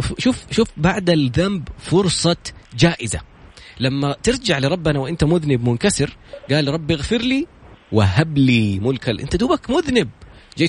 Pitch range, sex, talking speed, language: 125-180 Hz, male, 130 wpm, Arabic